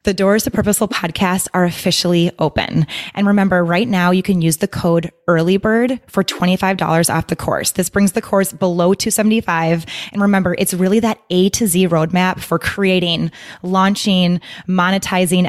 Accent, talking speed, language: American, 165 wpm, English